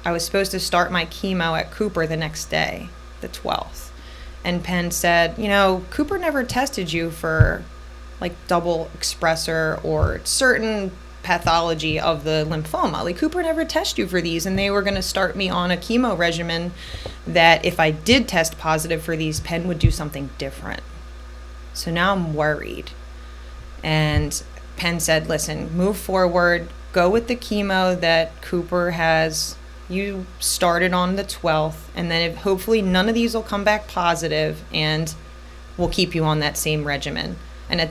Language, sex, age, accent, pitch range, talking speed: English, female, 20-39, American, 155-185 Hz, 170 wpm